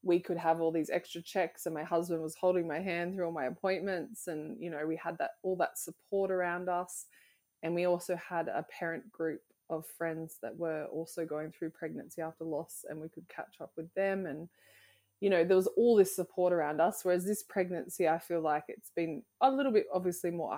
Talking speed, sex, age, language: 220 wpm, female, 20-39, English